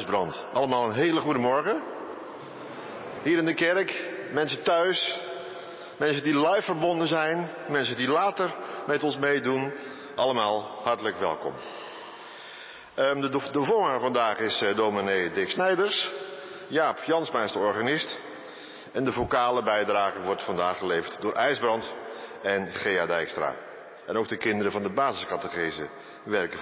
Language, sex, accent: Dutch, male, Dutch